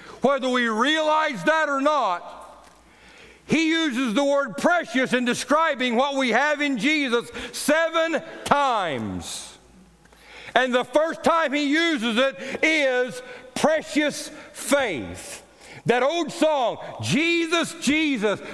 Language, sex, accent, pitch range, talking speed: English, male, American, 260-315 Hz, 115 wpm